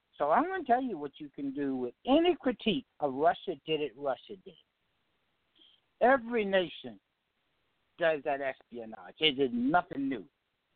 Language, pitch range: English, 145-190 Hz